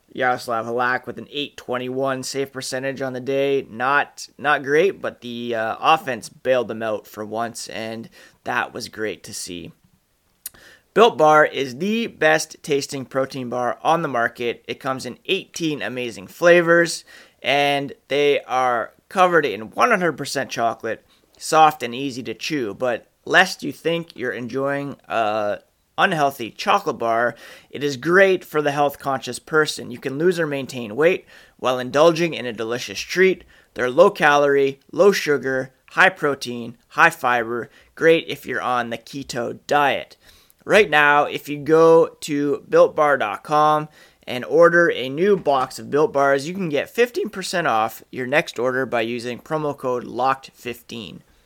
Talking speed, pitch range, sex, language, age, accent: 155 wpm, 120-160 Hz, male, English, 30-49, American